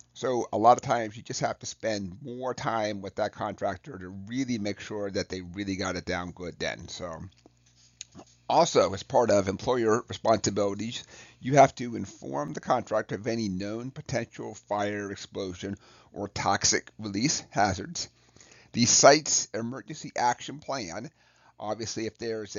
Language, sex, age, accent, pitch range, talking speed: English, male, 40-59, American, 95-115 Hz, 155 wpm